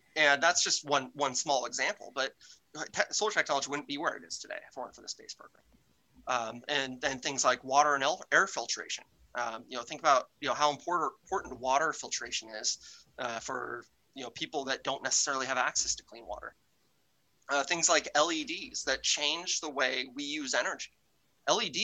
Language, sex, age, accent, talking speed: English, male, 30-49, American, 185 wpm